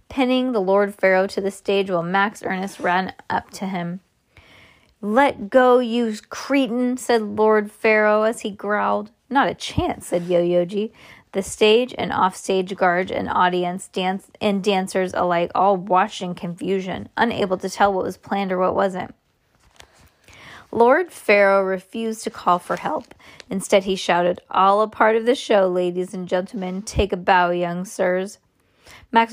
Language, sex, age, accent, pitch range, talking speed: English, female, 20-39, American, 185-215 Hz, 160 wpm